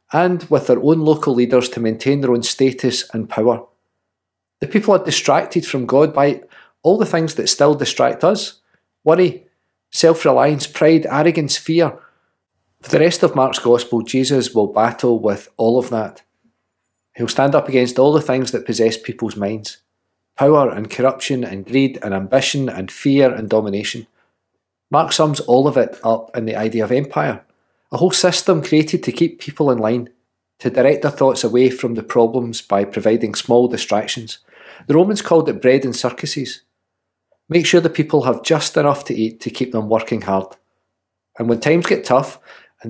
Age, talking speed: 40-59, 175 wpm